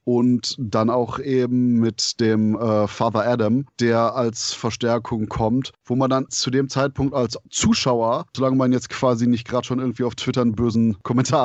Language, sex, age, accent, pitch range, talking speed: German, male, 30-49, German, 120-135 Hz, 180 wpm